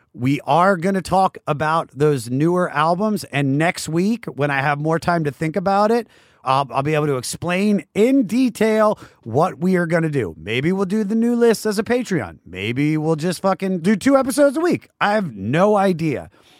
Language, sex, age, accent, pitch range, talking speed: English, male, 30-49, American, 135-195 Hz, 205 wpm